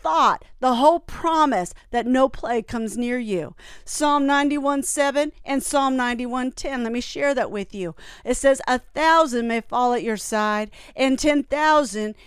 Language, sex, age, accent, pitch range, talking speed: English, female, 50-69, American, 240-295 Hz, 170 wpm